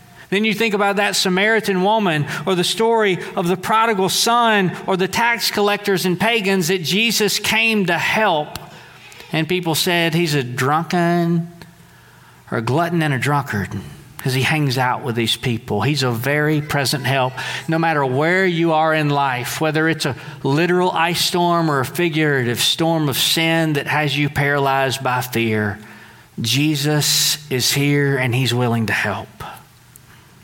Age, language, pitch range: 40-59, English, 135-195 Hz